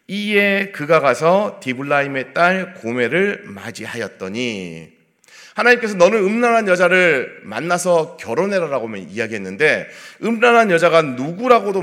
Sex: male